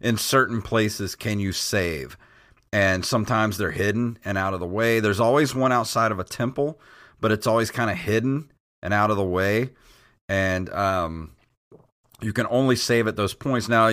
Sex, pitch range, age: male, 100-120 Hz, 40-59